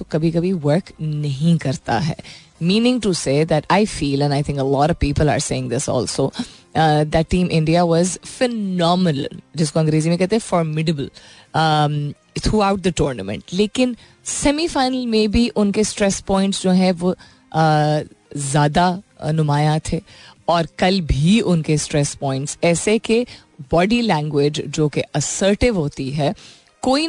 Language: Hindi